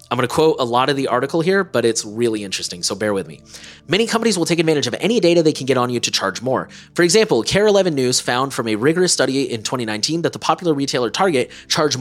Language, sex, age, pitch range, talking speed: English, male, 30-49, 120-165 Hz, 255 wpm